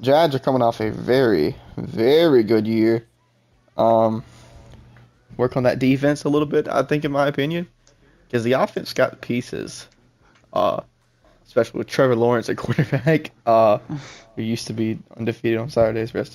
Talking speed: 160 wpm